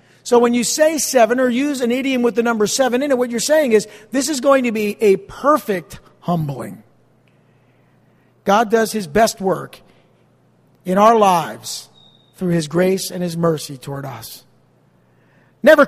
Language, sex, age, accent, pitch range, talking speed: English, male, 50-69, American, 165-240 Hz, 165 wpm